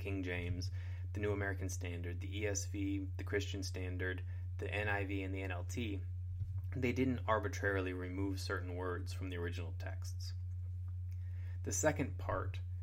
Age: 20-39